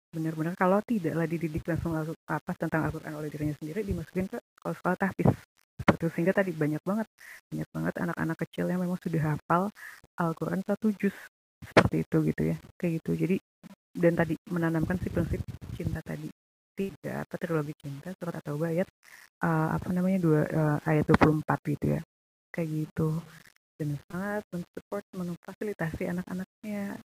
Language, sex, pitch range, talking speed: Indonesian, female, 160-205 Hz, 155 wpm